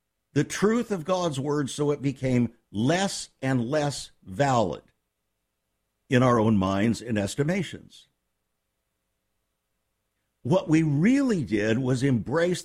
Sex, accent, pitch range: male, American, 110-160 Hz